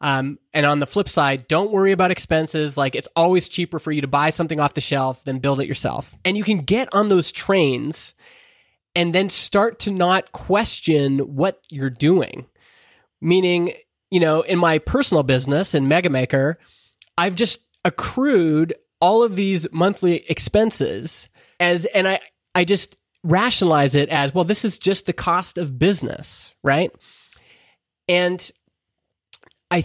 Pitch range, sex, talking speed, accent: 145-190 Hz, male, 155 wpm, American